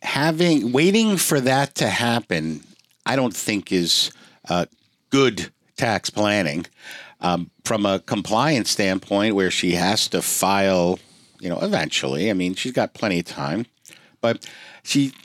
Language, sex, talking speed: English, male, 140 wpm